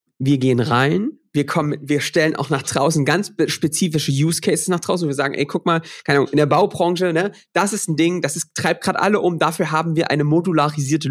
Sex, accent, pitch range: male, German, 150-195 Hz